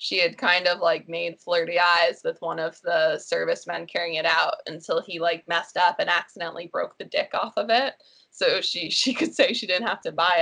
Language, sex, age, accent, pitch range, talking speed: English, female, 20-39, American, 180-245 Hz, 225 wpm